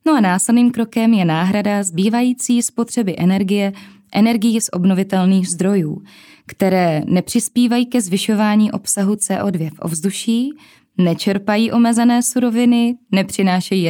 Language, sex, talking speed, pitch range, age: Czech, female, 110 wpm, 185-235 Hz, 20-39